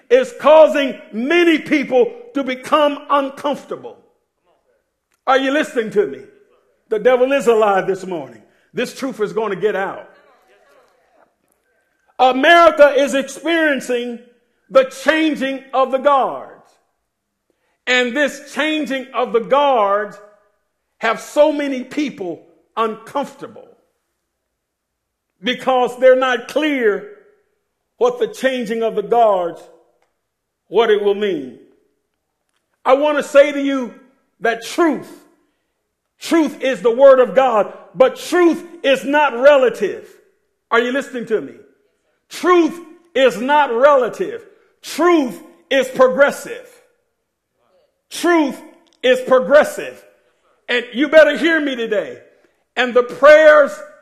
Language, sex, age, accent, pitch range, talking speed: English, male, 50-69, American, 250-320 Hz, 110 wpm